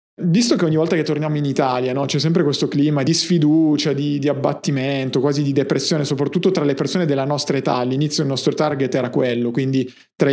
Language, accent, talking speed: Italian, native, 205 wpm